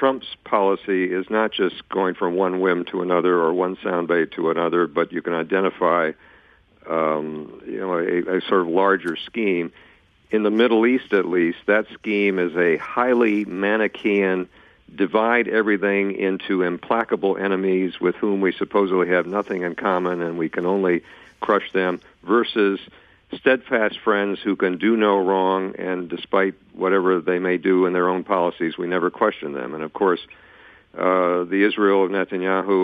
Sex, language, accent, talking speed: male, English, American, 165 wpm